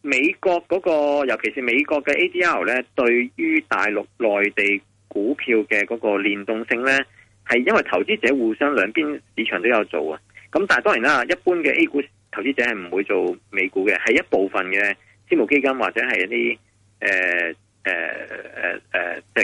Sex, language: male, Chinese